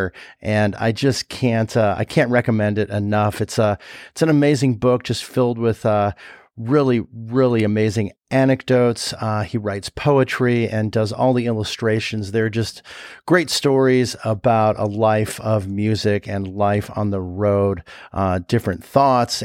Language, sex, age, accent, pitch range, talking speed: English, male, 40-59, American, 105-125 Hz, 155 wpm